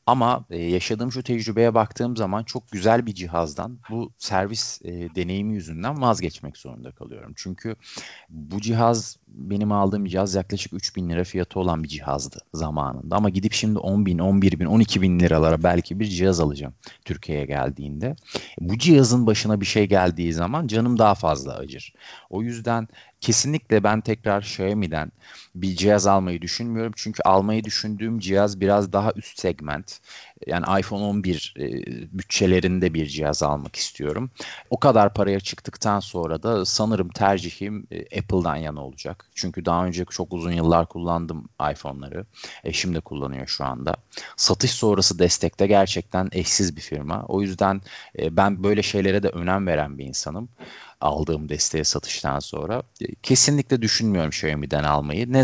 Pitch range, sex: 85-105 Hz, male